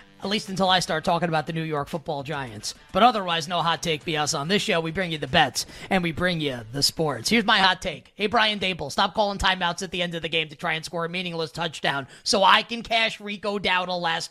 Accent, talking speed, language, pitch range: American, 270 wpm, English, 160-220 Hz